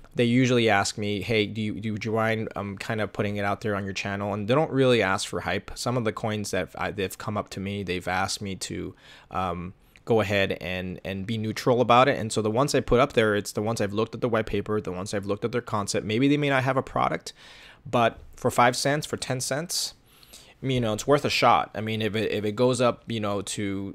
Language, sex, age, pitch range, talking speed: English, male, 20-39, 100-125 Hz, 270 wpm